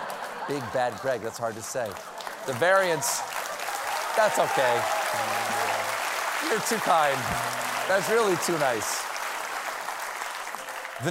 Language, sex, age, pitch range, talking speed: English, male, 30-49, 140-215 Hz, 105 wpm